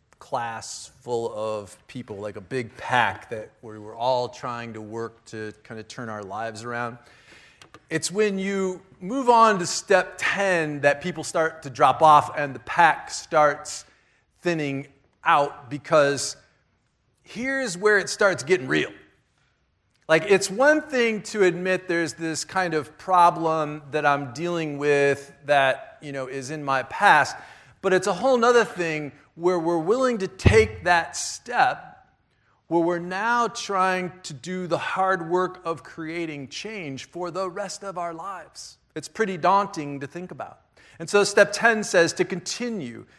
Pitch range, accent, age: 140-190 Hz, American, 40-59